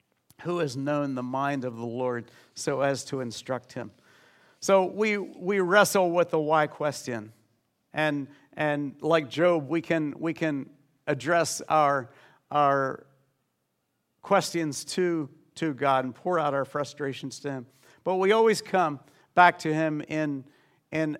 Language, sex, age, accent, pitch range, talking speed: English, male, 50-69, American, 145-180 Hz, 145 wpm